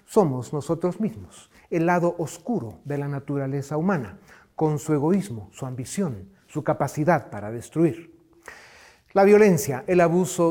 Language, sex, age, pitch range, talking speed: Spanish, male, 40-59, 140-185 Hz, 130 wpm